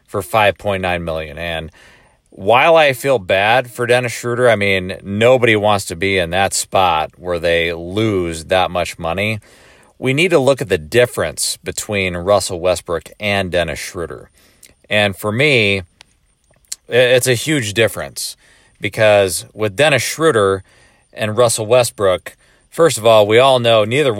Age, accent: 40-59, American